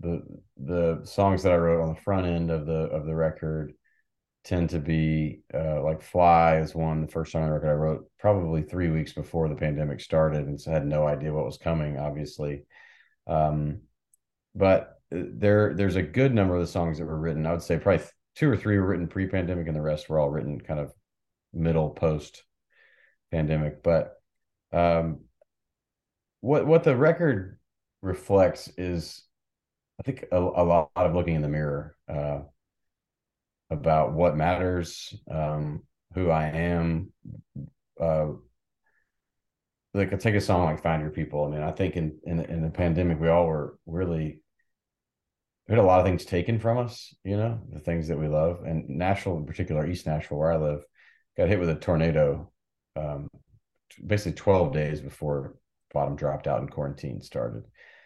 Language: English